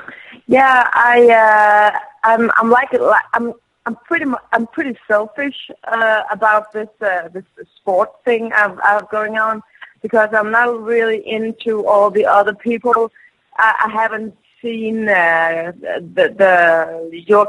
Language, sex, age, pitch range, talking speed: English, female, 30-49, 190-230 Hz, 125 wpm